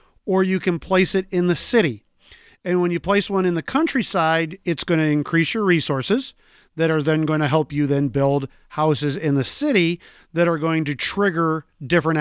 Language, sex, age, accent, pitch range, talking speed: English, male, 40-59, American, 150-190 Hz, 190 wpm